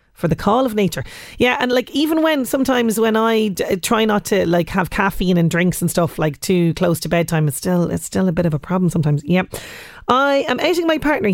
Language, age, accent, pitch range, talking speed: English, 30-49, Irish, 190-255 Hz, 245 wpm